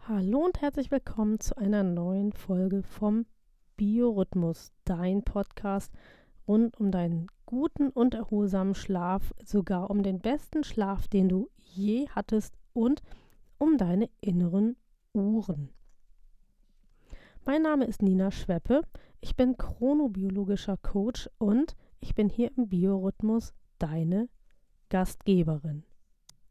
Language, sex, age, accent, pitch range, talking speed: German, female, 30-49, German, 195-235 Hz, 115 wpm